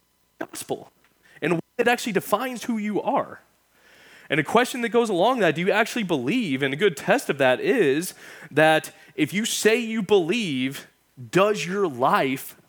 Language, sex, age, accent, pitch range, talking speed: English, male, 20-39, American, 125-175 Hz, 165 wpm